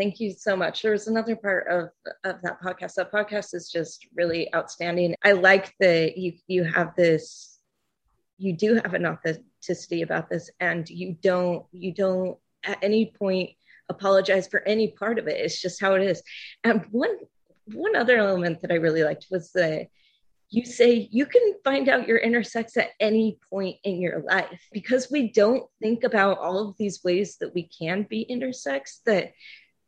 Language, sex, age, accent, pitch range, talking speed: English, female, 30-49, American, 175-220 Hz, 185 wpm